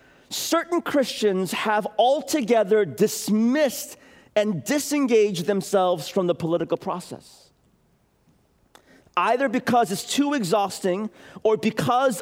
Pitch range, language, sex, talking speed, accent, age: 185-265 Hz, English, male, 95 wpm, American, 40-59